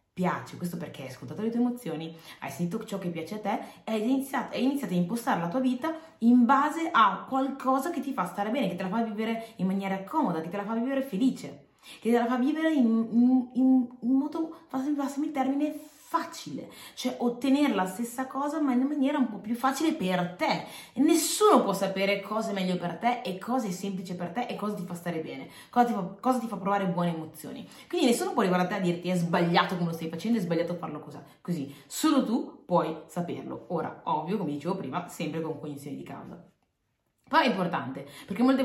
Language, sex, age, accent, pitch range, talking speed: Italian, female, 20-39, native, 175-255 Hz, 225 wpm